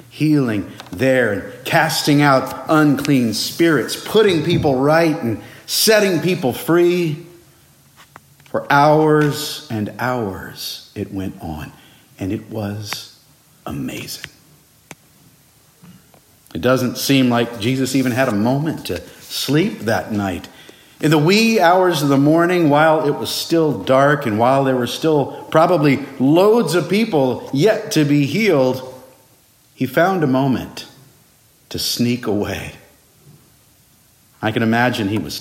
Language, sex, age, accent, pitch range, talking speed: English, male, 50-69, American, 125-170 Hz, 125 wpm